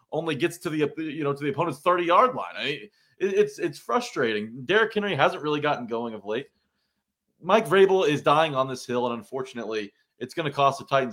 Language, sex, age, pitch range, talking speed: English, male, 30-49, 115-150 Hz, 210 wpm